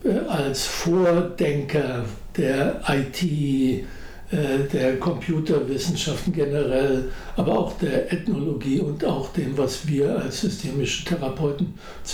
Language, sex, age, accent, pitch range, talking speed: German, male, 60-79, German, 135-180 Hz, 95 wpm